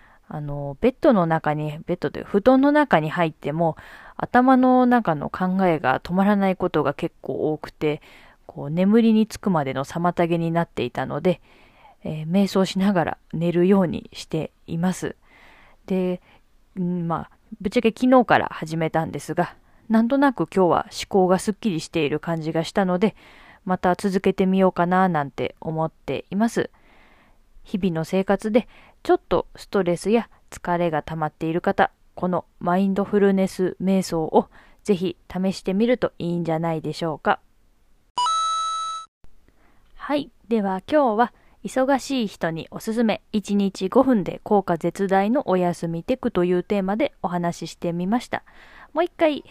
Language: Japanese